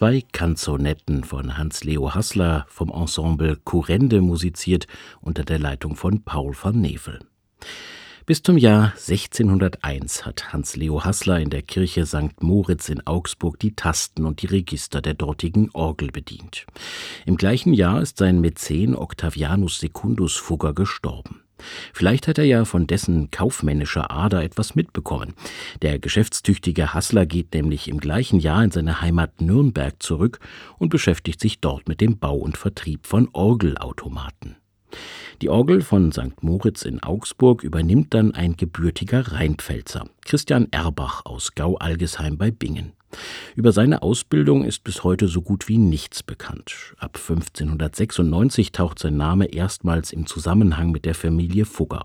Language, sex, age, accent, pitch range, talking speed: German, male, 50-69, German, 75-100 Hz, 145 wpm